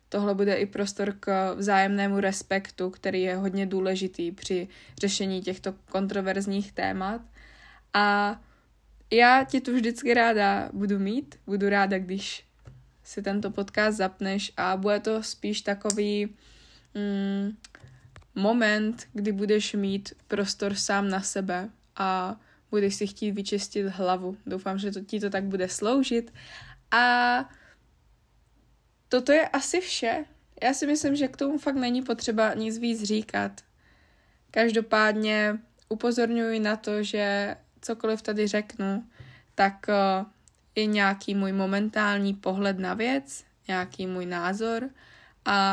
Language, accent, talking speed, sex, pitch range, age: Czech, native, 125 wpm, female, 195-220 Hz, 20-39